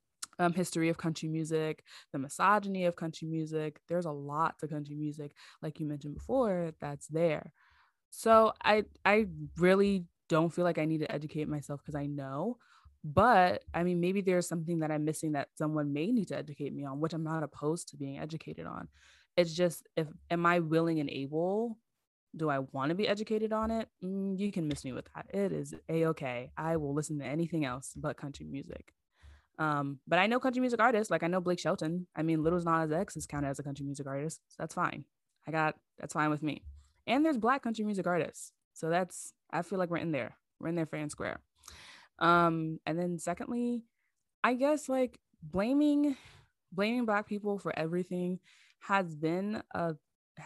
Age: 20-39